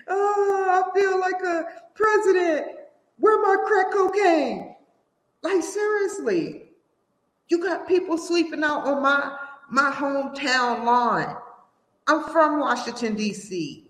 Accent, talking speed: American, 110 wpm